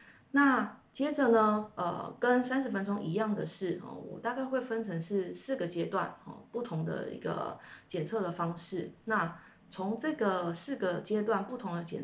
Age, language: 20-39, Chinese